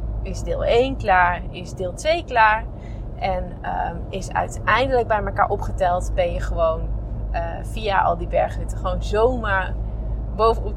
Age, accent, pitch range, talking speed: 20-39, Dutch, 110-175 Hz, 145 wpm